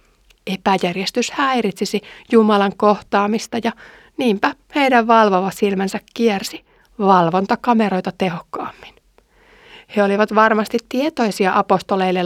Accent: native